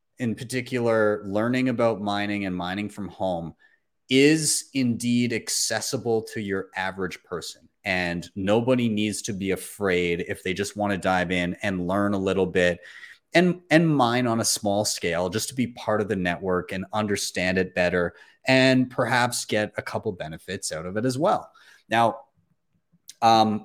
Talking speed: 165 wpm